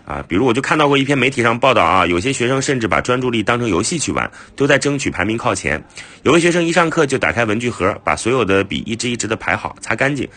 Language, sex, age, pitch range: Chinese, male, 30-49, 90-135 Hz